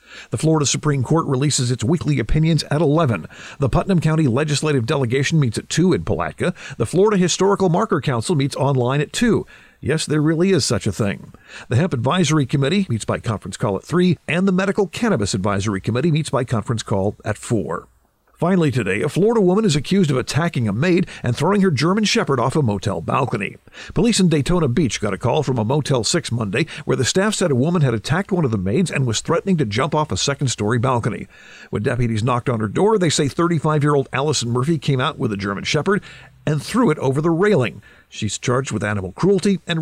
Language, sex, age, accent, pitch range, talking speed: English, male, 50-69, American, 120-170 Hz, 210 wpm